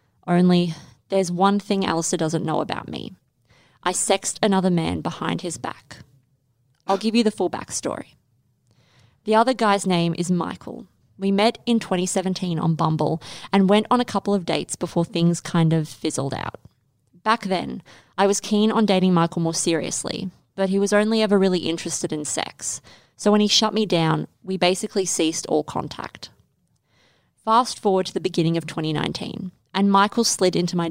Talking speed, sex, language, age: 175 wpm, female, English, 20-39